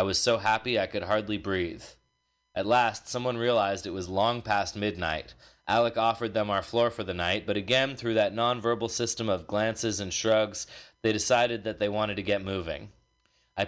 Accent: American